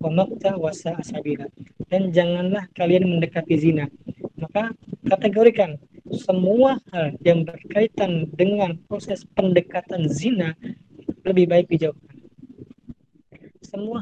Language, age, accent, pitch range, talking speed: Indonesian, 20-39, native, 165-195 Hz, 90 wpm